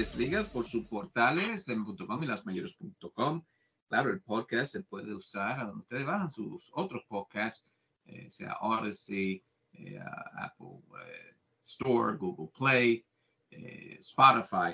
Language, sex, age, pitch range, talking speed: English, male, 50-69, 90-125 Hz, 145 wpm